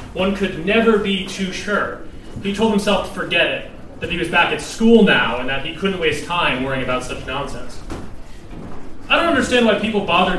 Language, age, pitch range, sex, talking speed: English, 30-49, 140-190 Hz, male, 200 wpm